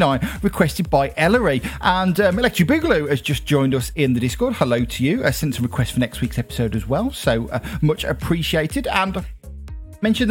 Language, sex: English, male